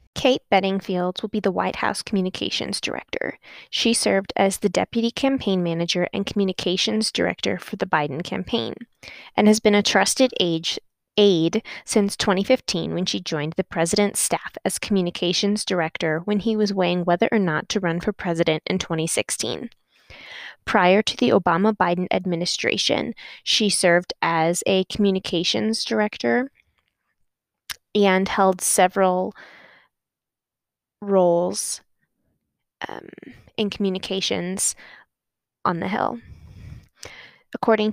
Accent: American